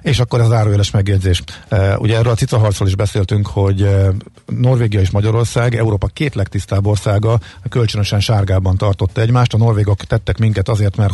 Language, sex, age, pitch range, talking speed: Hungarian, male, 50-69, 100-120 Hz, 175 wpm